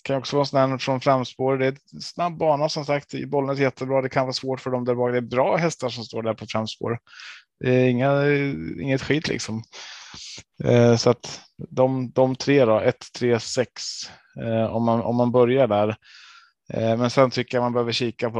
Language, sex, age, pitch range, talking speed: Swedish, male, 20-39, 110-125 Hz, 200 wpm